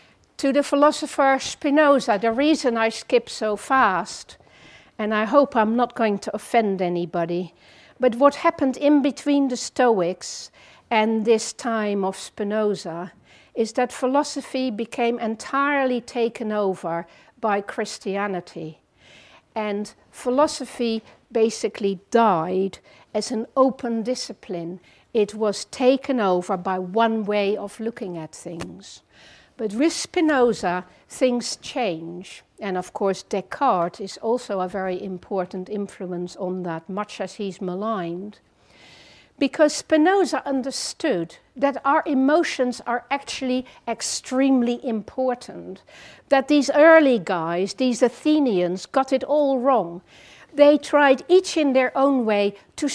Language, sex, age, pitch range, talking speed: English, female, 60-79, 200-270 Hz, 120 wpm